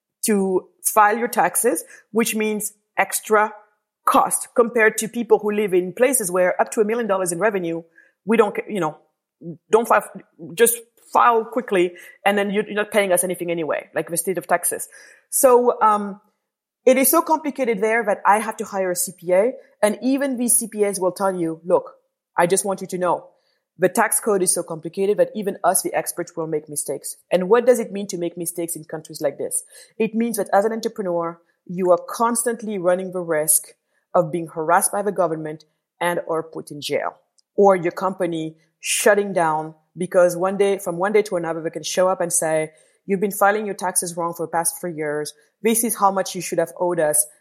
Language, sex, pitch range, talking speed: English, female, 175-220 Hz, 205 wpm